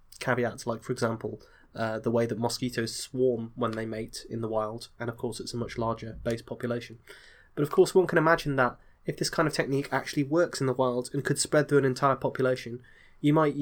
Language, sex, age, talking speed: English, male, 20-39, 225 wpm